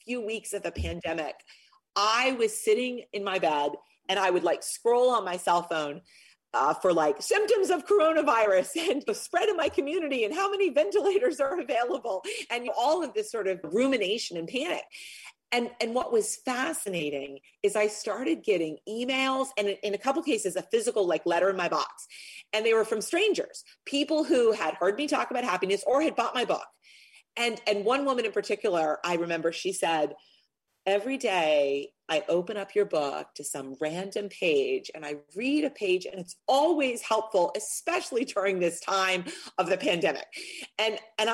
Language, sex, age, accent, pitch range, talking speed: English, female, 40-59, American, 180-300 Hz, 185 wpm